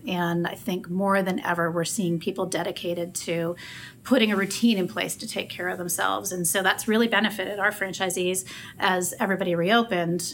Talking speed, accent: 180 wpm, American